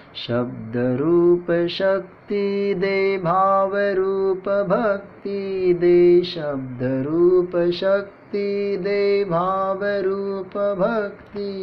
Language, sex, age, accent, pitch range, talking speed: Marathi, male, 30-49, native, 175-210 Hz, 65 wpm